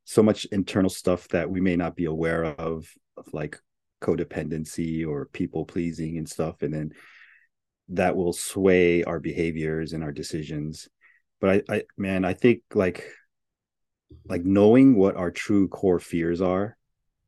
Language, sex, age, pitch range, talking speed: English, male, 30-49, 85-100 Hz, 155 wpm